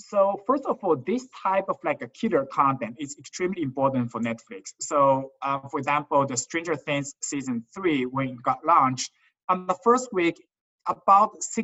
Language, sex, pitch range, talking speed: English, male, 140-200 Hz, 175 wpm